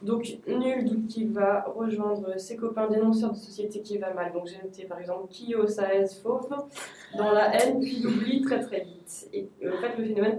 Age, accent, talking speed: 20-39, French, 210 wpm